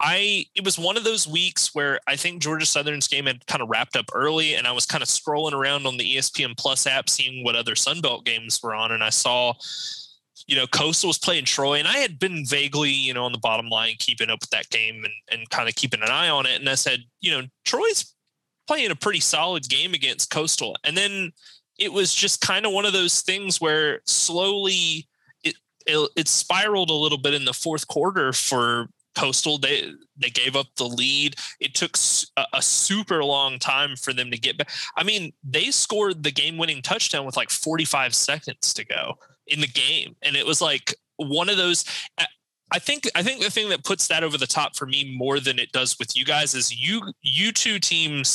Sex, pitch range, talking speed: male, 130-170 Hz, 220 wpm